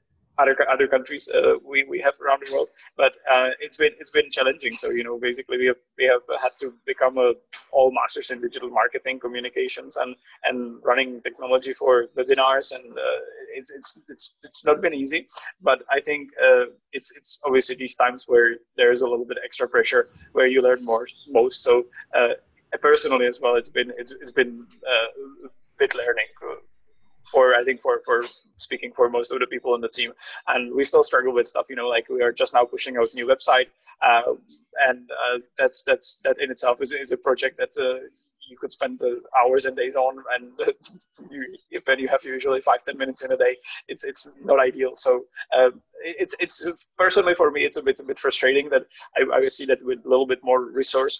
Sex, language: male, English